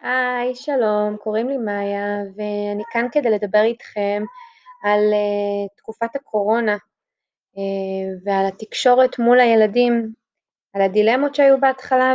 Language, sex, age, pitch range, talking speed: Hebrew, female, 20-39, 200-250 Hz, 115 wpm